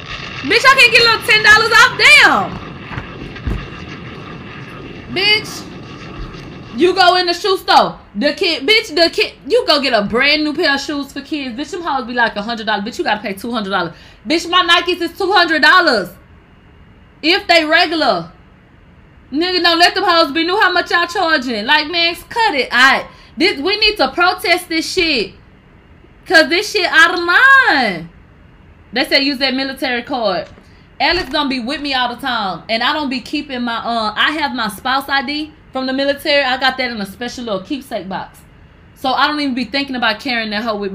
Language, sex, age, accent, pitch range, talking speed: English, female, 20-39, American, 210-330 Hz, 190 wpm